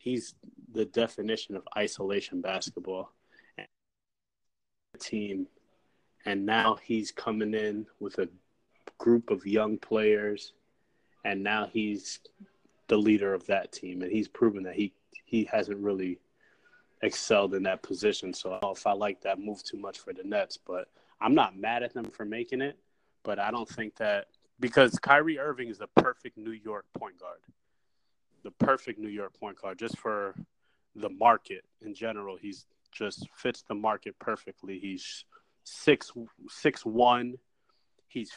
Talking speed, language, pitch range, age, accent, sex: 150 wpm, English, 105-120 Hz, 20-39, American, male